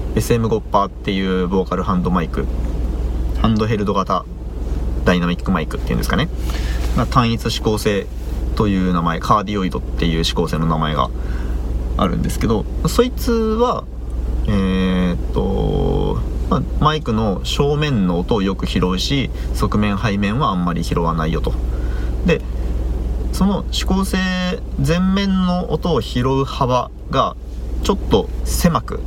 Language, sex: Japanese, male